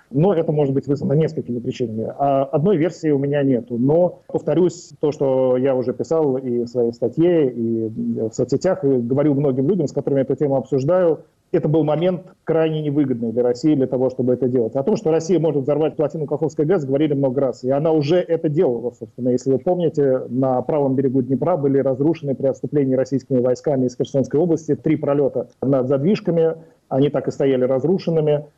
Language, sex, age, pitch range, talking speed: Russian, male, 40-59, 130-155 Hz, 190 wpm